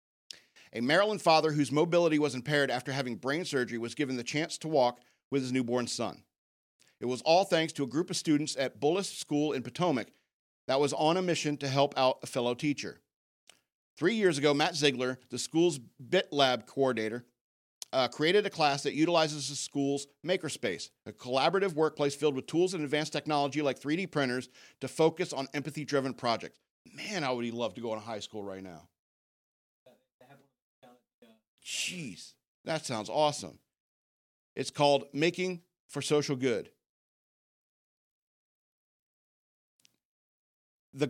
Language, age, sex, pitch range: English, 50-69, male, 130-155 Hz